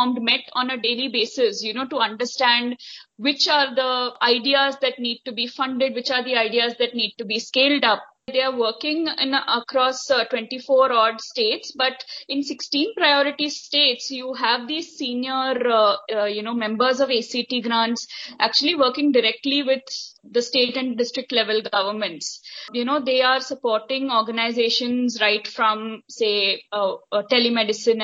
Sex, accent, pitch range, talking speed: female, Indian, 230-280 Hz, 160 wpm